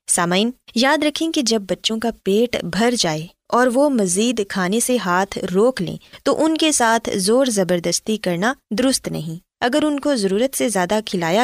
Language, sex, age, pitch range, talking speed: Urdu, female, 20-39, 195-270 Hz, 180 wpm